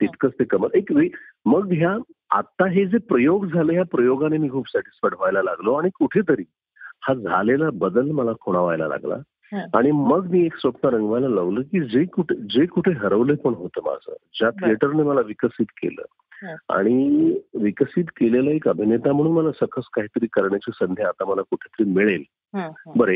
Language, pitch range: Marathi, 115-195 Hz